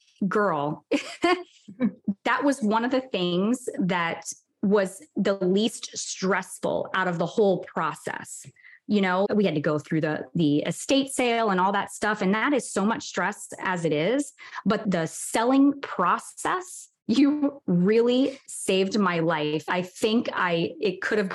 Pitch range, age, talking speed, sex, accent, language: 170-225 Hz, 20-39, 155 wpm, female, American, English